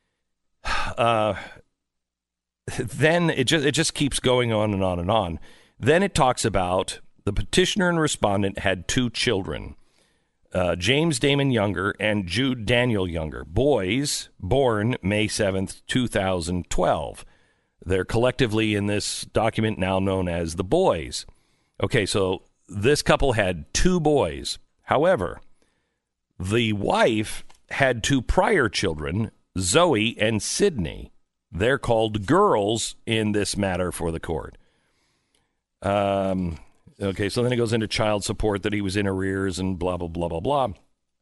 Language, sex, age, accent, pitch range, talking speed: English, male, 50-69, American, 95-130 Hz, 135 wpm